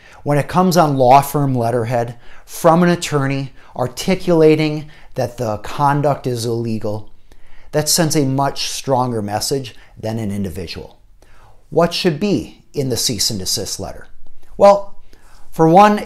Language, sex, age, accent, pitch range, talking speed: English, male, 50-69, American, 110-150 Hz, 140 wpm